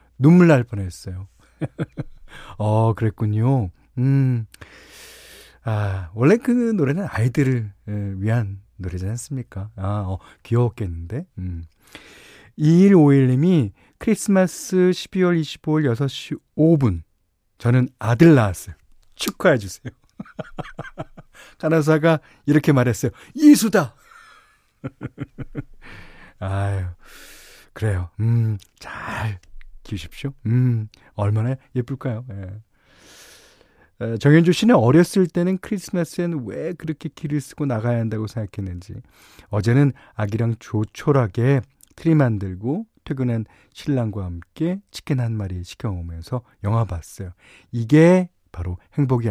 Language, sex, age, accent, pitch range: Korean, male, 40-59, native, 100-145 Hz